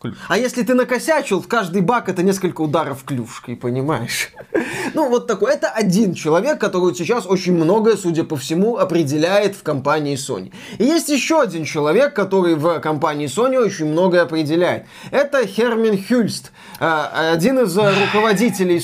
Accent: native